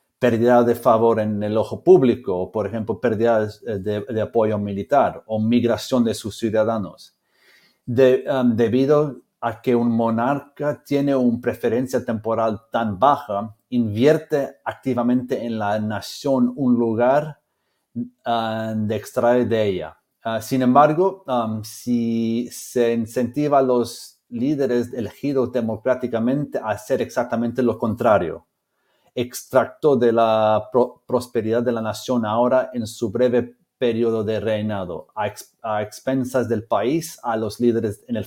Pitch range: 110-125 Hz